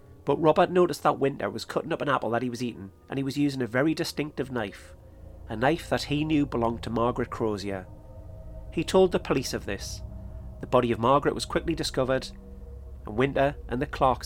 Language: English